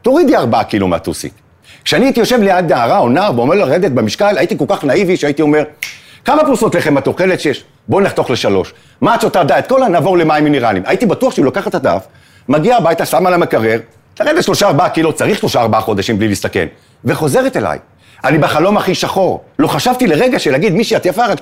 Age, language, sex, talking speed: 50-69, Hebrew, male, 205 wpm